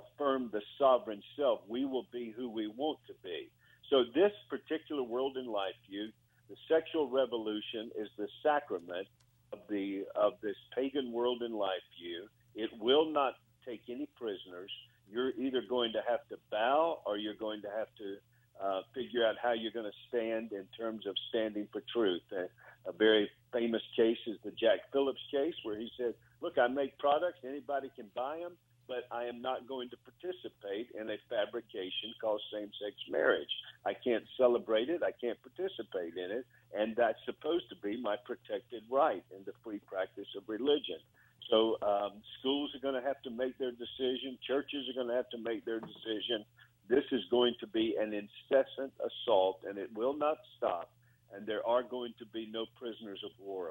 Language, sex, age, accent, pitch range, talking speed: English, male, 50-69, American, 110-135 Hz, 185 wpm